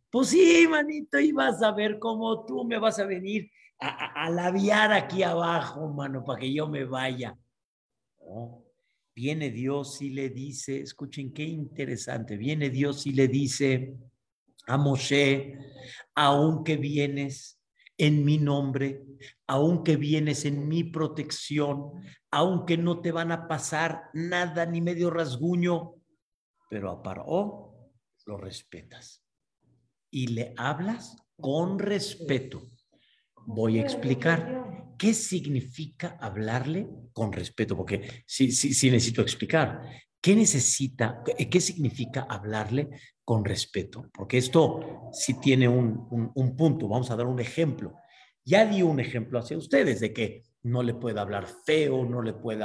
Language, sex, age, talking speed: Spanish, male, 50-69, 140 wpm